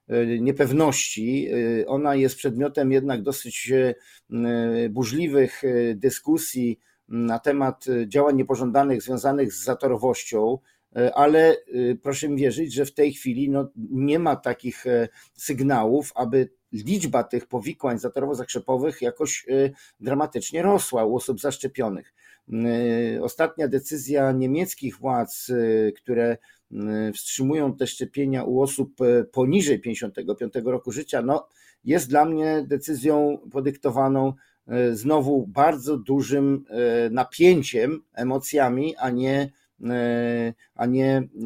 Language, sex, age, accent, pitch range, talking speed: Polish, male, 50-69, native, 120-145 Hz, 95 wpm